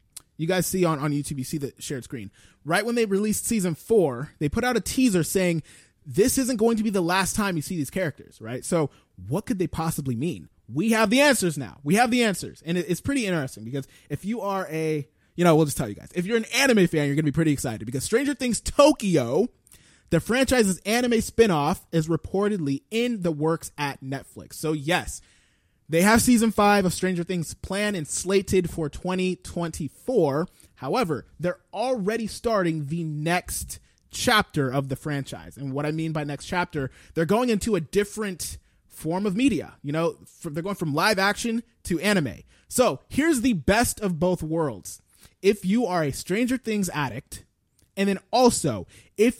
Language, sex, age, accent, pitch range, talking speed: English, male, 20-39, American, 150-210 Hz, 195 wpm